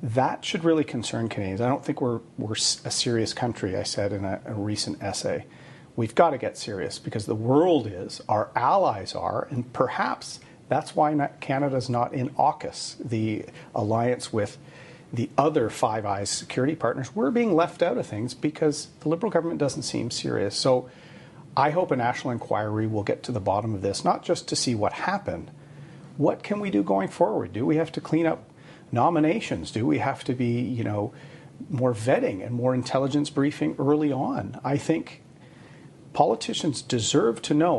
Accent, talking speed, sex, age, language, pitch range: American, 185 wpm, male, 40-59, English, 110-150 Hz